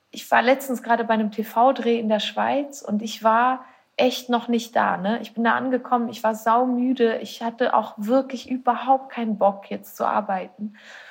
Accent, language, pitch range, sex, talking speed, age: German, German, 220-270 Hz, female, 185 wpm, 30-49